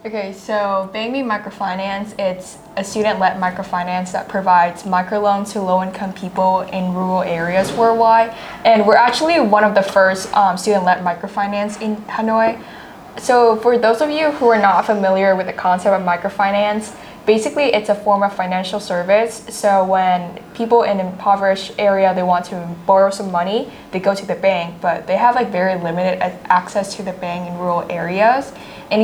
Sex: female